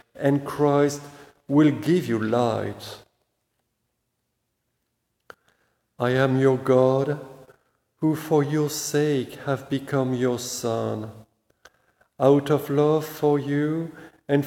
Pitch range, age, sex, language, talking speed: 125-155 Hz, 50-69, male, English, 100 wpm